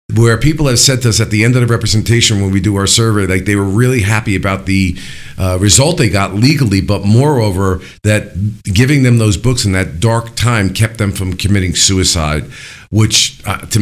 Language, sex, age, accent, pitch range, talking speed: English, male, 50-69, American, 100-130 Hz, 210 wpm